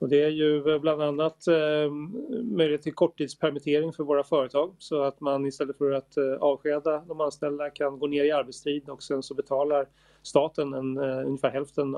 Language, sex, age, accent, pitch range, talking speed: English, male, 30-49, Swedish, 135-150 Hz, 170 wpm